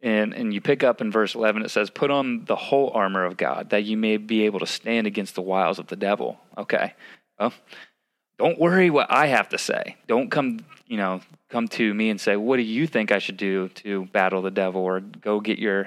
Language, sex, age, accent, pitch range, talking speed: English, male, 20-39, American, 100-110 Hz, 240 wpm